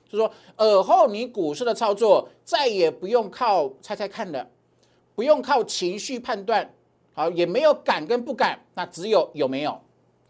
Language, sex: Chinese, male